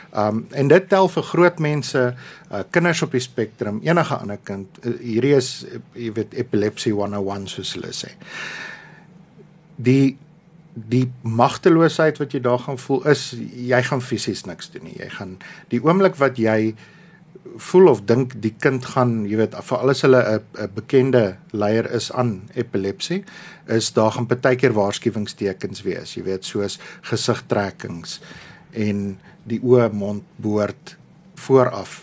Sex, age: male, 50-69